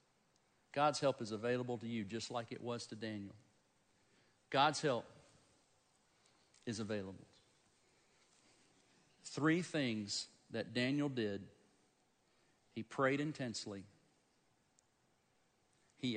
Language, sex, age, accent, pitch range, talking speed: English, male, 50-69, American, 120-195 Hz, 95 wpm